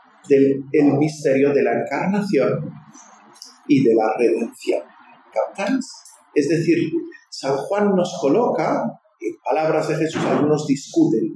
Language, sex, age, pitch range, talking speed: English, male, 50-69, 145-240 Hz, 115 wpm